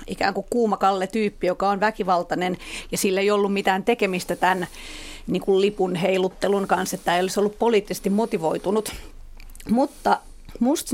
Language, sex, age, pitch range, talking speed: Finnish, female, 40-59, 185-225 Hz, 155 wpm